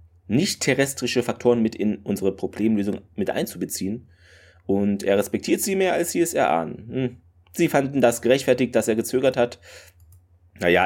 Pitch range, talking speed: 90-125 Hz, 155 wpm